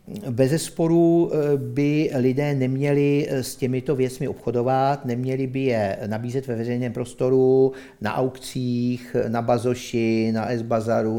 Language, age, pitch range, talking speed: Czech, 50-69, 115-135 Hz, 120 wpm